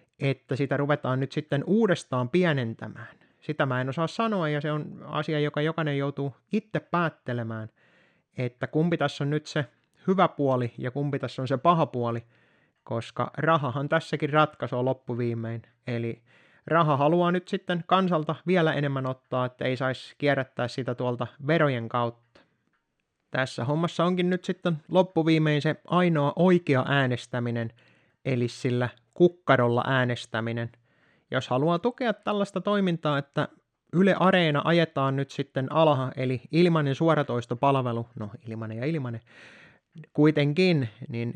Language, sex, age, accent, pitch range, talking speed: Finnish, male, 20-39, native, 125-165 Hz, 135 wpm